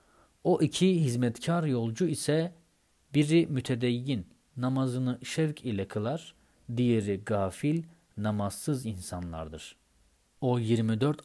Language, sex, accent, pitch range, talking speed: Turkish, male, native, 105-145 Hz, 90 wpm